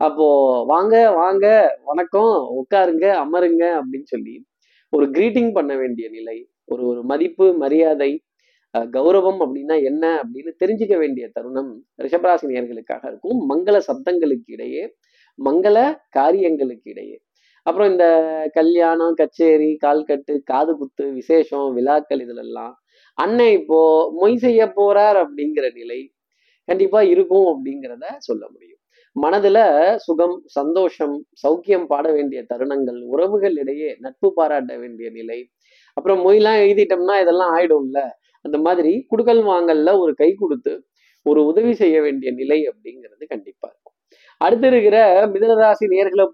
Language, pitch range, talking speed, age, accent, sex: Tamil, 150-225 Hz, 120 wpm, 20-39, native, male